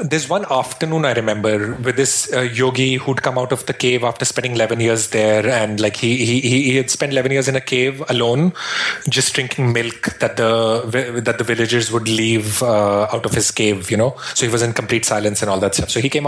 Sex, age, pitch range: male, 30-49, 115-140 Hz